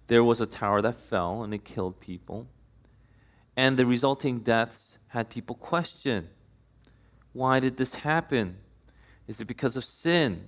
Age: 30-49